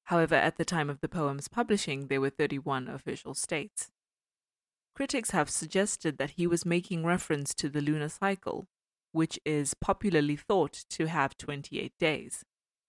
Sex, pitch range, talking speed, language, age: female, 145-180 Hz, 155 wpm, English, 20-39